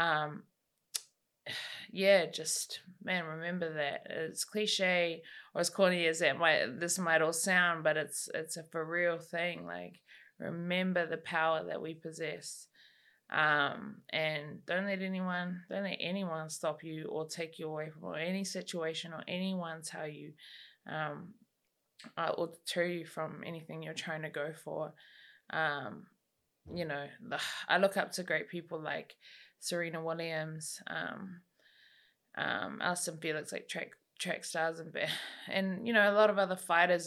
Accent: Australian